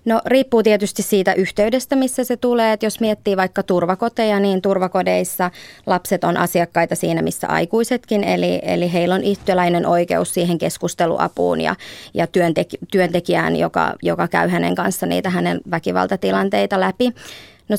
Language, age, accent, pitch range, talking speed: Finnish, 20-39, native, 170-205 Hz, 140 wpm